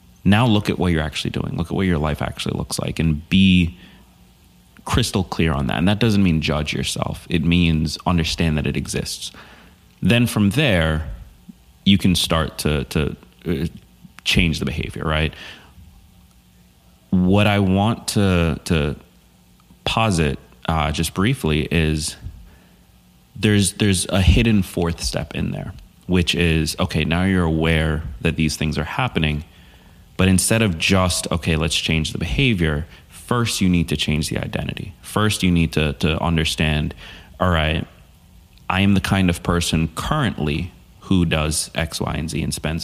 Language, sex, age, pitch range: English, male, 30-49, 80-95 Hz